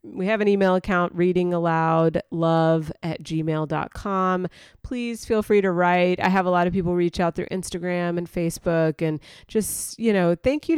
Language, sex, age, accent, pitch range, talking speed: English, female, 30-49, American, 160-195 Hz, 195 wpm